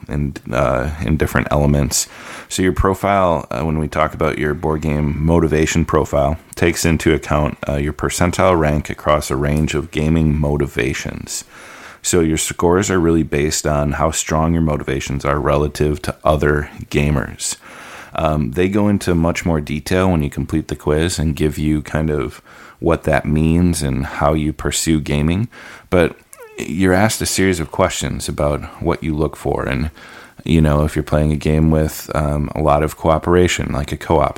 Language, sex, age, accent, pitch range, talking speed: English, male, 30-49, American, 75-80 Hz, 175 wpm